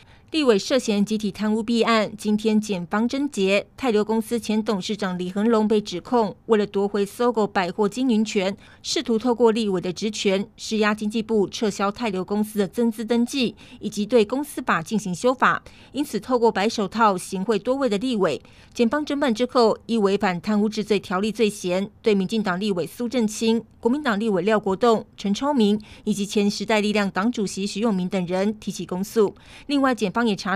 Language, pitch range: Chinese, 200-235 Hz